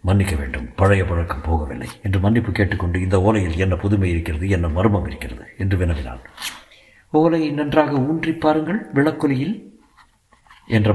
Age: 60-79